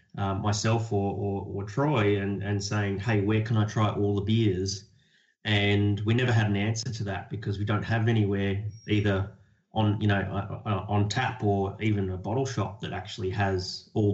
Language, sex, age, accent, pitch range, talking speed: English, male, 30-49, Australian, 100-115 Hz, 190 wpm